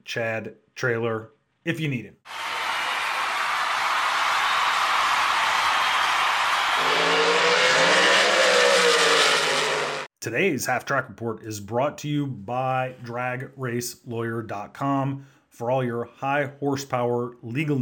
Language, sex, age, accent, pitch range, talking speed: English, male, 30-49, American, 105-130 Hz, 75 wpm